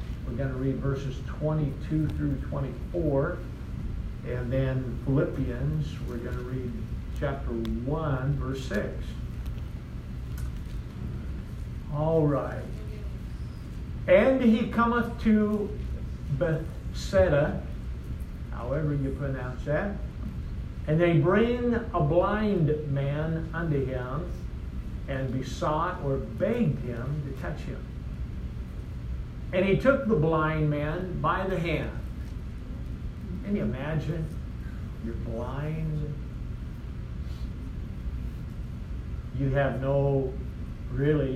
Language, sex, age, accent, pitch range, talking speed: English, male, 60-79, American, 120-150 Hz, 95 wpm